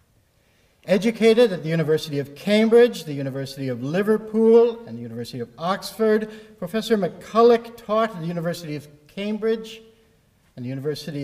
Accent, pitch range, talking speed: American, 135-190 Hz, 140 wpm